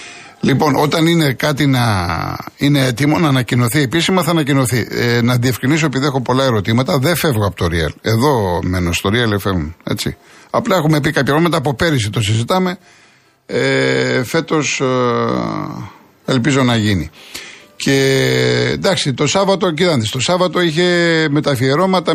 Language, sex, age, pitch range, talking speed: Greek, male, 50-69, 115-150 Hz, 145 wpm